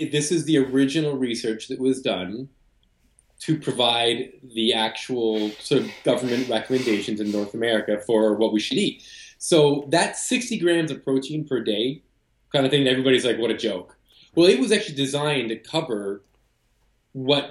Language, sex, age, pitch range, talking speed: English, male, 20-39, 115-140 Hz, 165 wpm